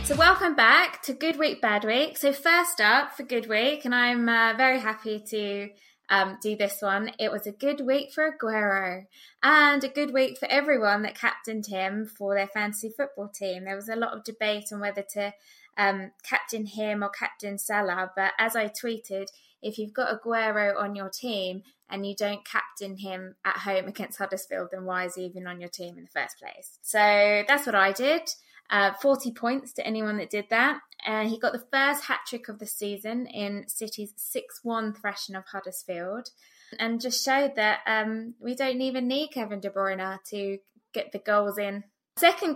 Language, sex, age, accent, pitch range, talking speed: English, female, 20-39, British, 200-245 Hz, 195 wpm